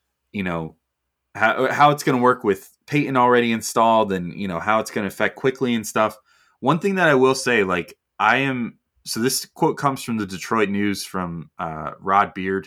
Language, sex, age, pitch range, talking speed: English, male, 20-39, 95-130 Hz, 210 wpm